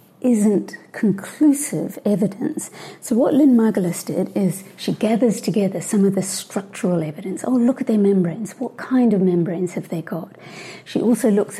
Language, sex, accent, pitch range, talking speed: English, female, British, 180-220 Hz, 165 wpm